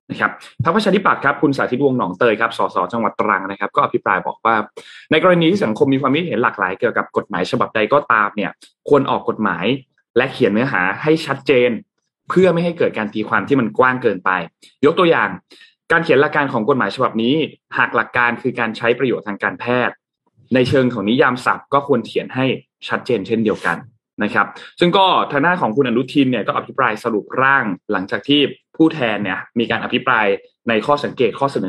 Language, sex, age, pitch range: Thai, male, 20-39, 115-160 Hz